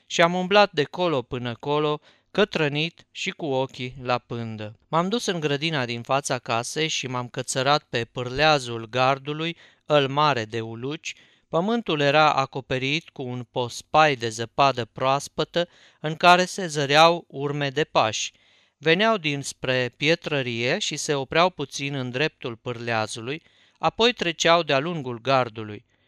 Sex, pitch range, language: male, 130-170 Hz, Romanian